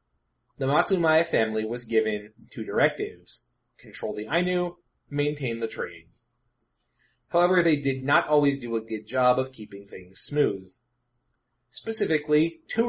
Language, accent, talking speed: English, American, 130 wpm